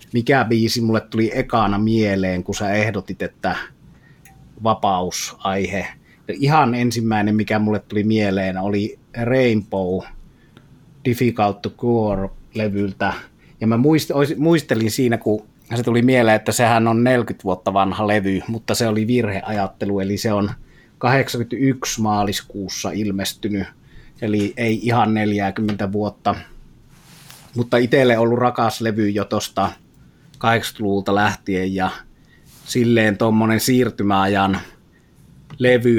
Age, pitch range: 30-49, 100-120 Hz